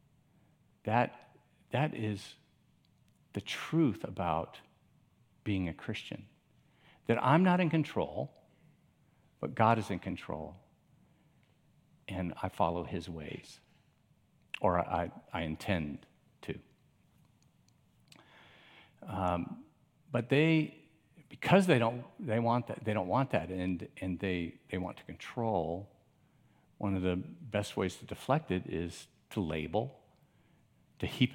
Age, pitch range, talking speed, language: 50-69, 95-125 Hz, 120 wpm, English